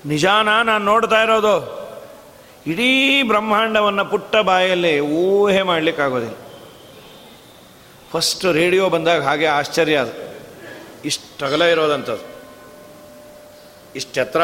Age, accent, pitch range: 40-59, native, 170-215 Hz